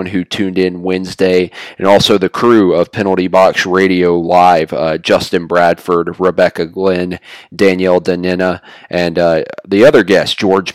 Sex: male